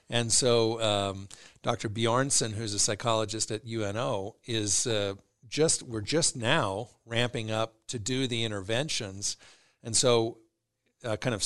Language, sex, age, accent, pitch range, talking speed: English, male, 50-69, American, 105-120 Hz, 140 wpm